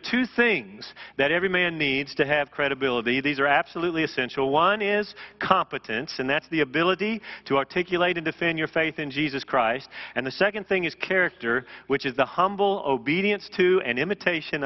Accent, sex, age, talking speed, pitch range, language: American, male, 40-59, 175 wpm, 135-175 Hz, English